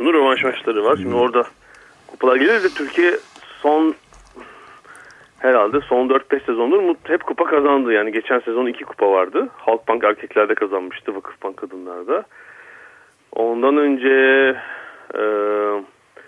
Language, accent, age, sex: Turkish, native, 40-59, male